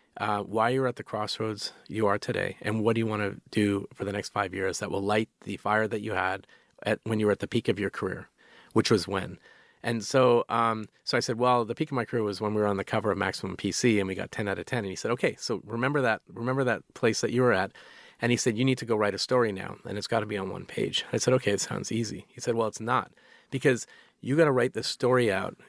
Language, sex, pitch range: English, male, 105-120 Hz